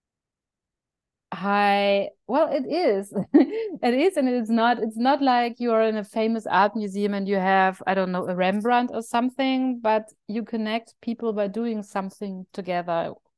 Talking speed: 165 wpm